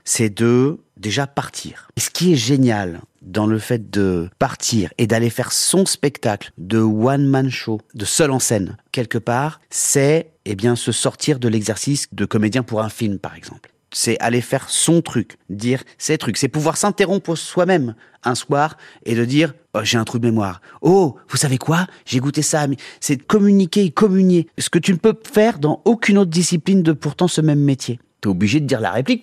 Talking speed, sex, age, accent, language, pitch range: 205 wpm, male, 30-49, French, French, 110-150 Hz